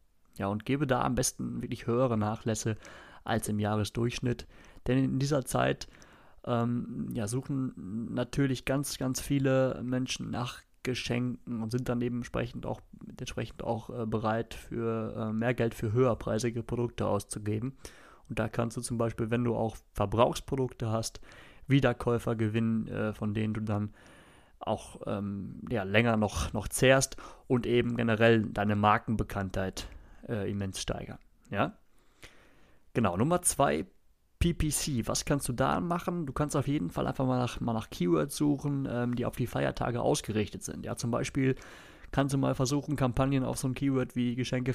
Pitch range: 110-130 Hz